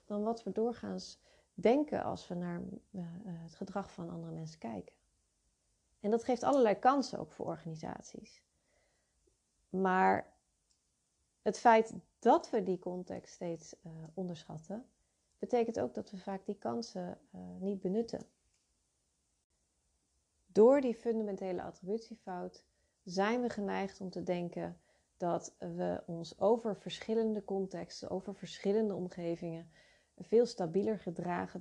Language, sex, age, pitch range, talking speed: Dutch, female, 40-59, 175-220 Hz, 125 wpm